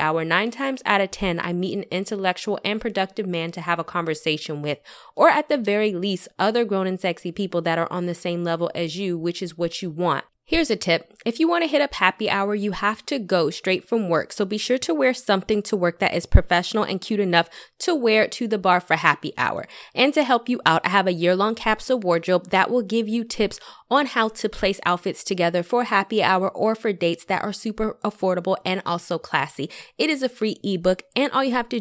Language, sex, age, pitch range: English, female, 20-39, 175-225 Hz